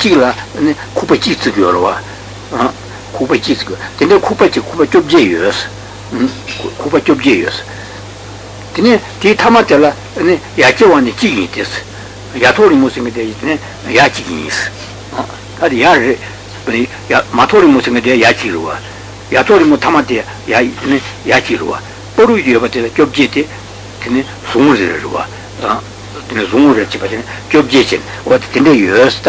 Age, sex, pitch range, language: 60-79, male, 100-125 Hz, Italian